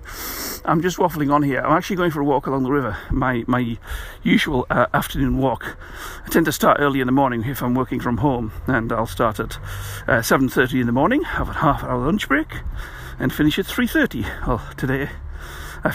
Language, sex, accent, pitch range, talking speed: English, male, British, 80-130 Hz, 205 wpm